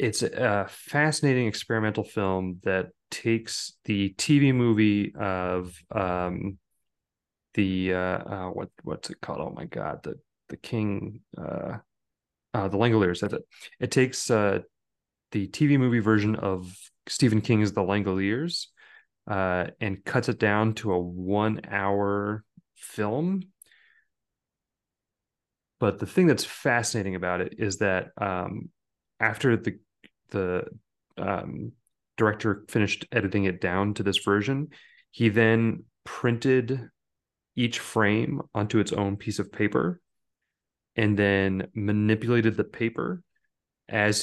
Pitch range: 100-115 Hz